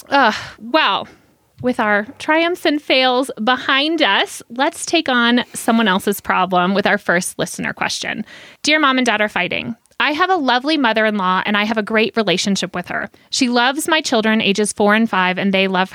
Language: English